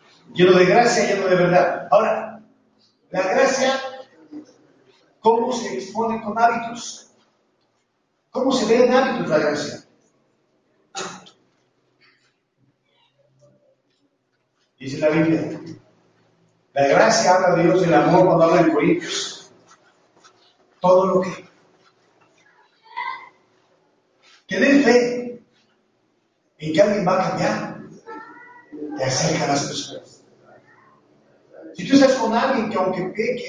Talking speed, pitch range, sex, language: 115 wpm, 175-240 Hz, male, Spanish